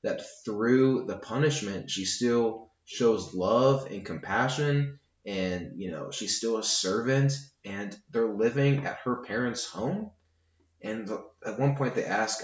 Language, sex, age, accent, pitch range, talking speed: English, male, 20-39, American, 95-125 Hz, 145 wpm